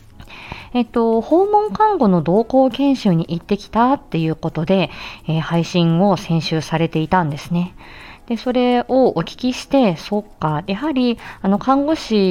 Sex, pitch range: female, 160-225 Hz